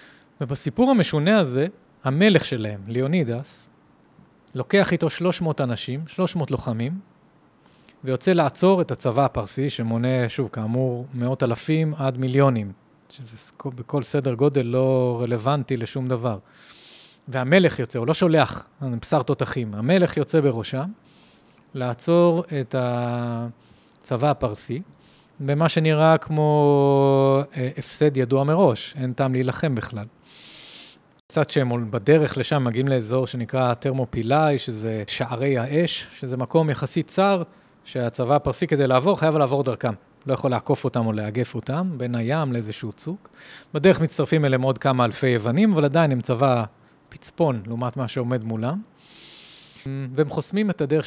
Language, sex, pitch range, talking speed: Hebrew, male, 125-155 Hz, 130 wpm